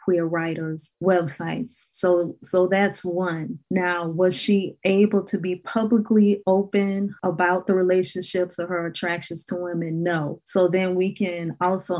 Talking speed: 145 wpm